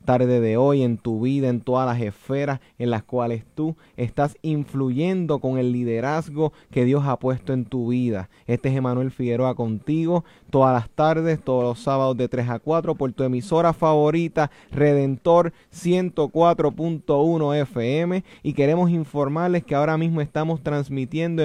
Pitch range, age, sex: 125-160 Hz, 30-49, male